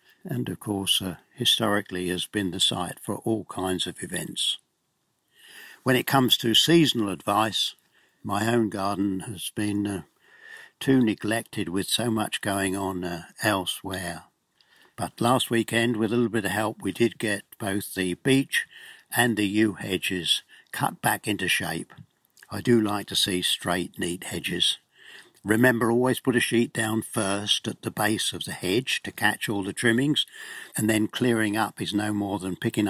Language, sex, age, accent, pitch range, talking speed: English, male, 60-79, British, 95-115 Hz, 170 wpm